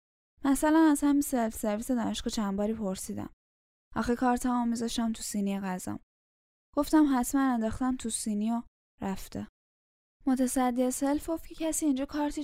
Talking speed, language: 125 wpm, Persian